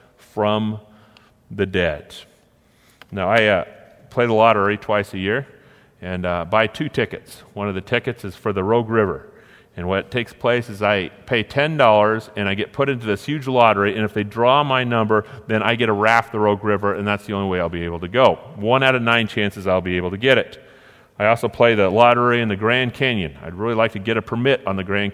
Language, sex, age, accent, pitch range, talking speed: English, male, 40-59, American, 100-120 Hz, 230 wpm